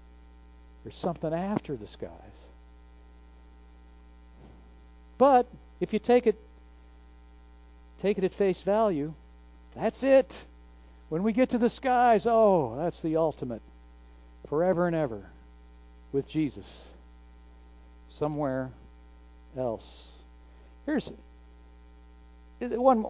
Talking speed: 95 wpm